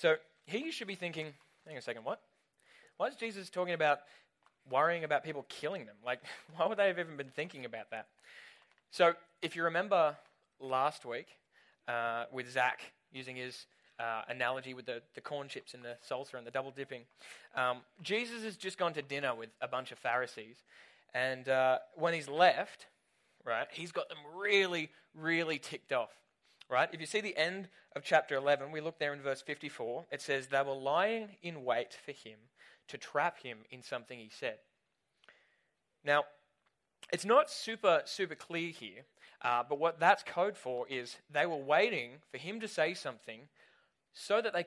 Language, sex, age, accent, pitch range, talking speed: English, male, 20-39, Australian, 130-175 Hz, 185 wpm